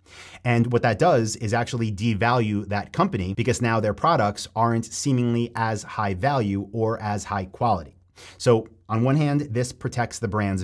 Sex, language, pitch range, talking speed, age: male, English, 100-120 Hz, 170 wpm, 30-49